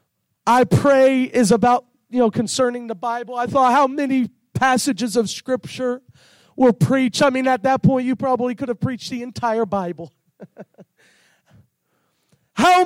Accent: American